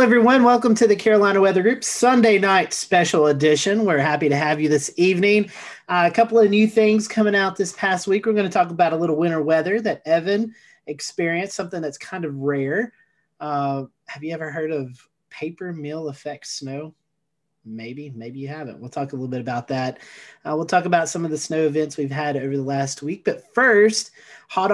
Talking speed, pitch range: 205 wpm, 150-200 Hz